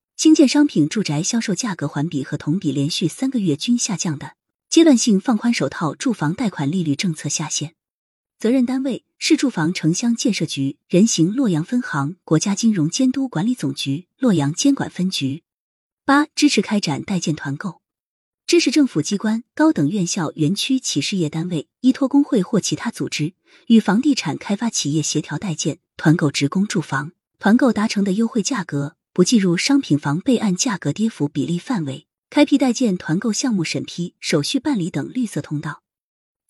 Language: Chinese